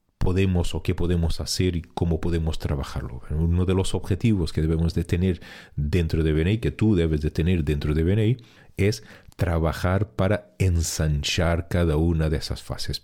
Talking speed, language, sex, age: 175 wpm, Spanish, male, 40-59